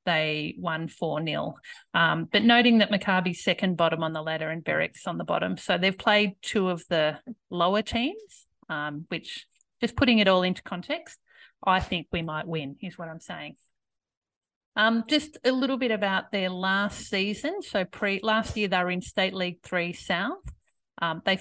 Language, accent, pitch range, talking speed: English, Australian, 170-215 Hz, 180 wpm